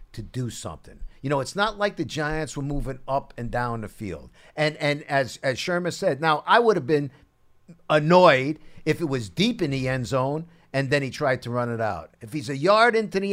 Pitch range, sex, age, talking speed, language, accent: 145-220 Hz, male, 50-69, 230 wpm, English, American